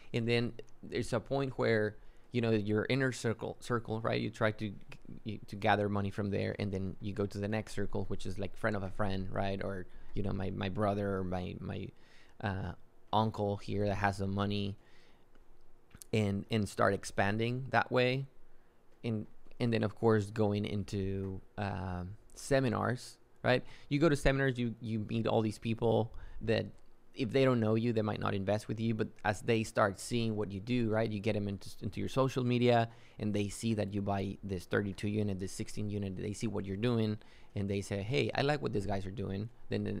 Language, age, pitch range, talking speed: English, 20-39, 100-115 Hz, 210 wpm